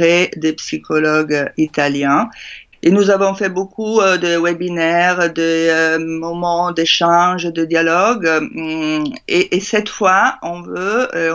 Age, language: 50-69, French